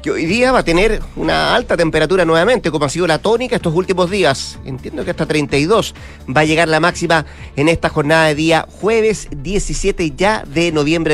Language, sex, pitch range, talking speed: Spanish, male, 155-190 Hz, 200 wpm